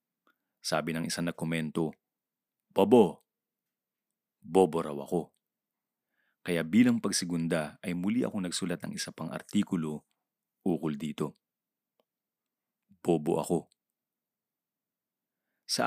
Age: 30-49